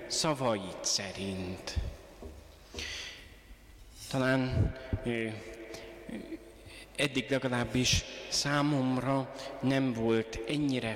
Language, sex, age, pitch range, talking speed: Hungarian, male, 30-49, 115-135 Hz, 60 wpm